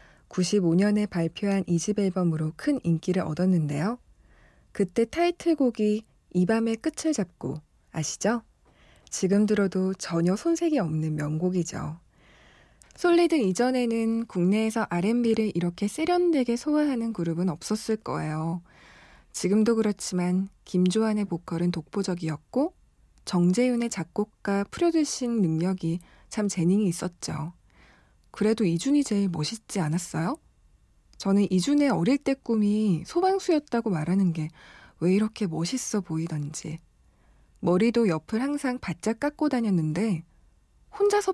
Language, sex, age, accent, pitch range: Korean, female, 20-39, native, 170-235 Hz